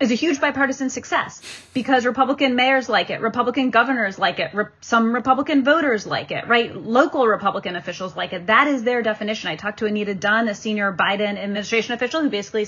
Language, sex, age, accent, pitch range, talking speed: English, female, 30-49, American, 205-260 Hz, 195 wpm